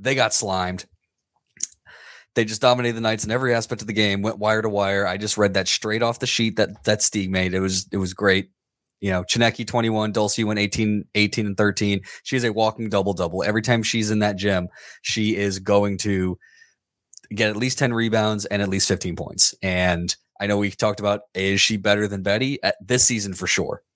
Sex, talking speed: male, 215 wpm